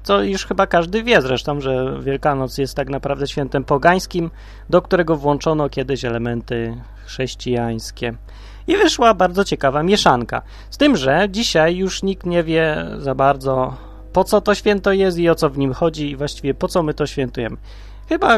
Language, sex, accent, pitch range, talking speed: Polish, male, native, 130-180 Hz, 175 wpm